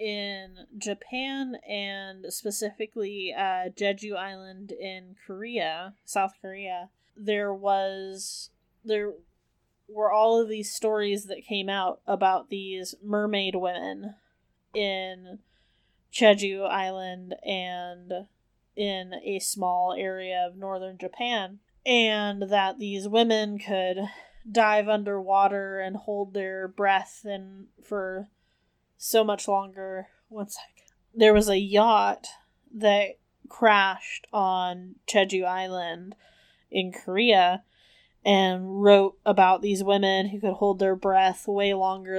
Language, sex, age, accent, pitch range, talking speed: English, female, 20-39, American, 185-210 Hz, 110 wpm